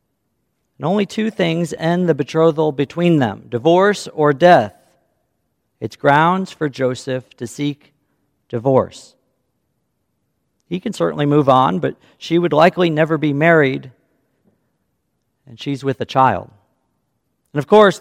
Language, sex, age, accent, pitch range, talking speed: English, male, 50-69, American, 140-185 Hz, 130 wpm